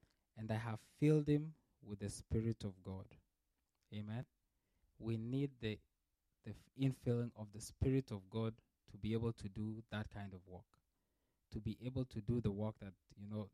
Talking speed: 175 wpm